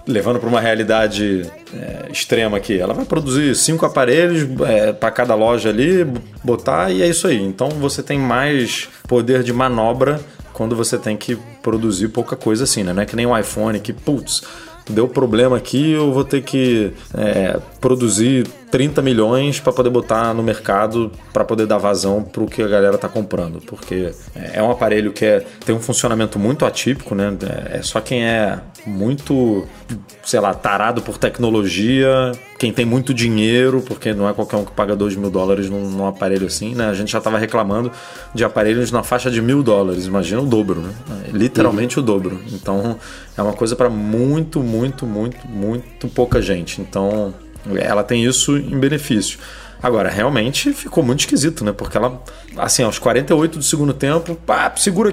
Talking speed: 175 wpm